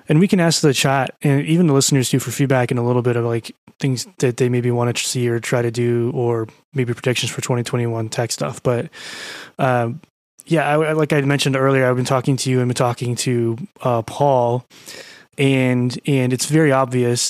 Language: English